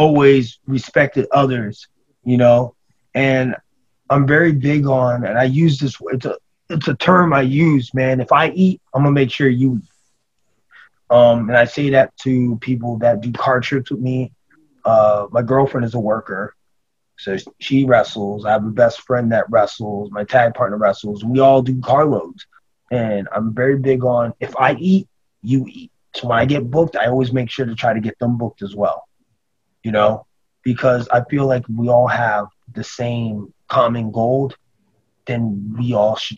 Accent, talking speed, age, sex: American, 190 wpm, 20-39, male